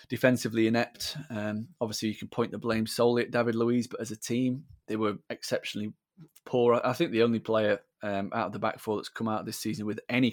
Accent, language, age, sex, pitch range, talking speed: British, English, 20-39, male, 105-120 Hz, 225 wpm